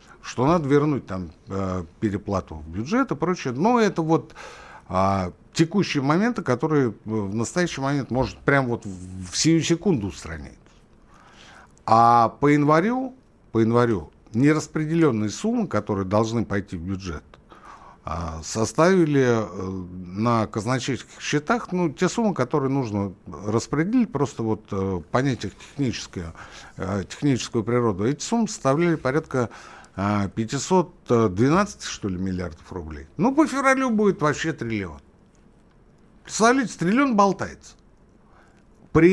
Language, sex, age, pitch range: Russian, male, 60-79, 95-160 Hz